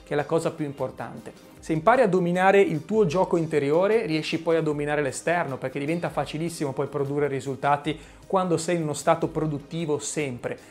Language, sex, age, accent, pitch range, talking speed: Italian, male, 30-49, native, 140-185 Hz, 175 wpm